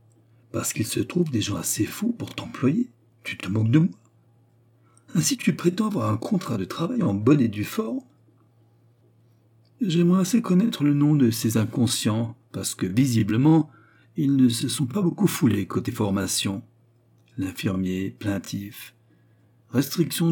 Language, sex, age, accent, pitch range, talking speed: French, male, 60-79, French, 110-135 Hz, 150 wpm